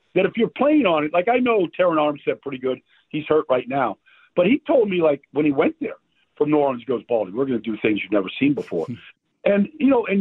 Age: 50-69